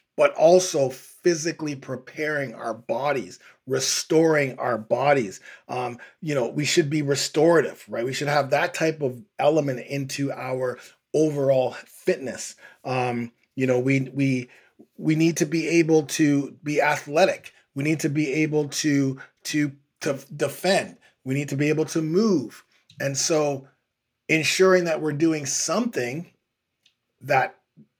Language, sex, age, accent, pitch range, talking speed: English, male, 30-49, American, 135-165 Hz, 140 wpm